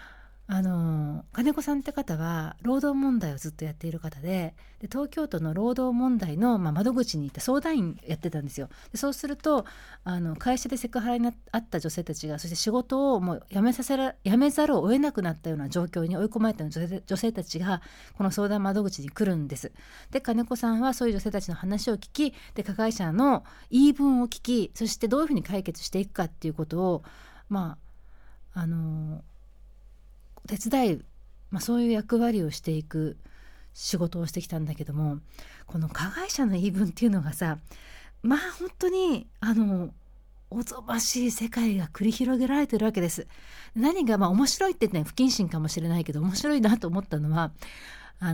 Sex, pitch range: female, 160-250 Hz